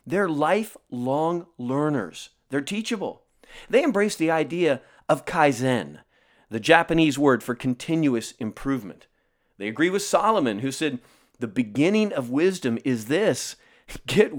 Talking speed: 125 wpm